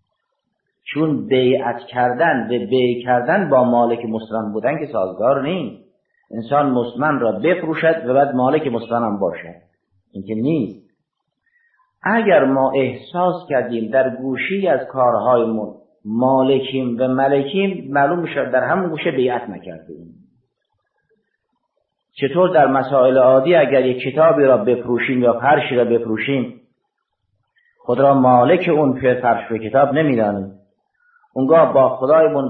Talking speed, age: 125 wpm, 50-69